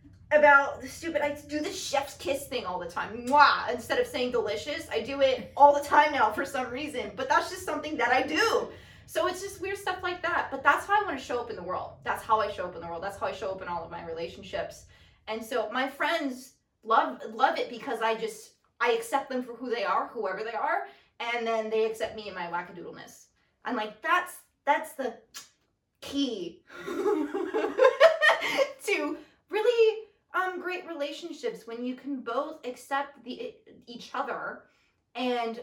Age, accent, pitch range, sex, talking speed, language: 20-39, American, 220-300 Hz, female, 200 wpm, English